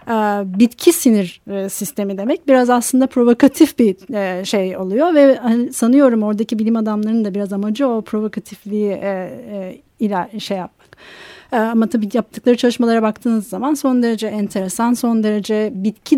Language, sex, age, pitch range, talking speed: Turkish, female, 30-49, 205-260 Hz, 125 wpm